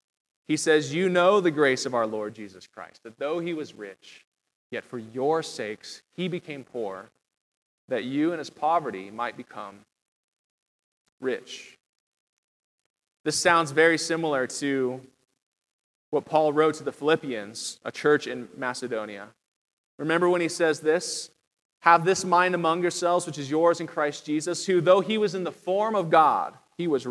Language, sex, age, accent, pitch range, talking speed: English, male, 20-39, American, 140-175 Hz, 160 wpm